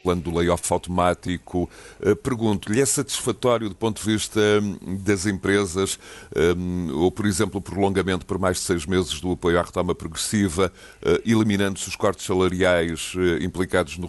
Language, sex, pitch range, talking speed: Portuguese, male, 95-110 Hz, 145 wpm